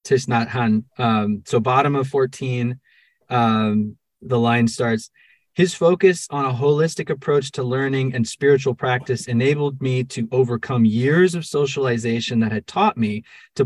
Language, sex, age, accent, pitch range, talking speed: English, male, 30-49, American, 115-140 Hz, 140 wpm